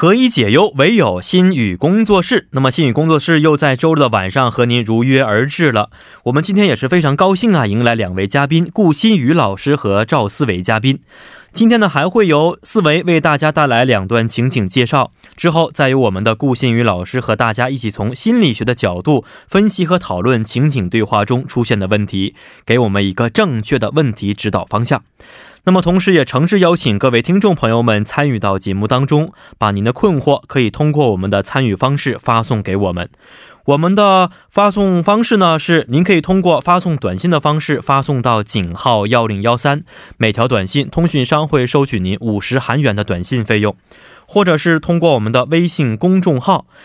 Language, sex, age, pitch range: Korean, male, 20-39, 115-165 Hz